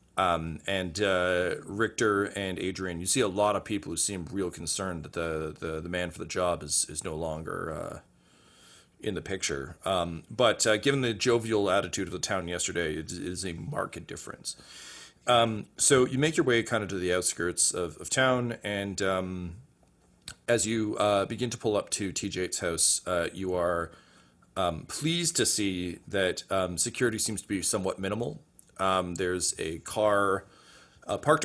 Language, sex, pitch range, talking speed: English, male, 85-105 Hz, 185 wpm